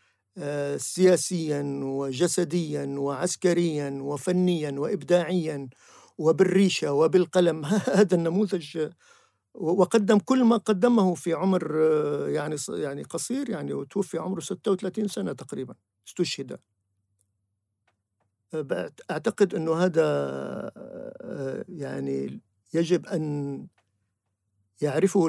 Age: 50-69